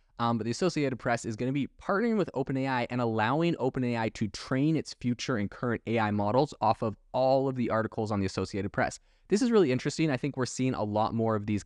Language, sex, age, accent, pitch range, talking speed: English, male, 20-39, American, 105-130 Hz, 235 wpm